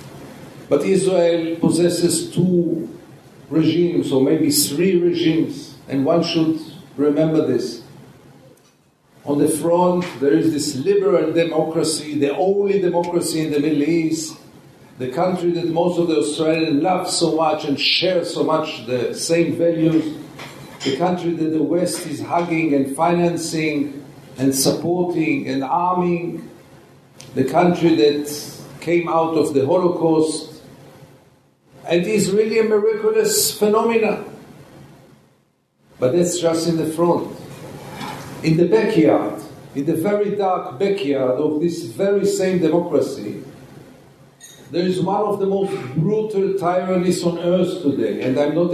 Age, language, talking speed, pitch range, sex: 50-69, English, 130 wpm, 145-175 Hz, male